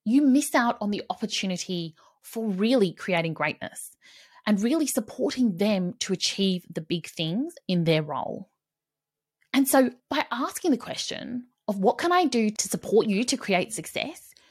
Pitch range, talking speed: 180-255 Hz, 160 wpm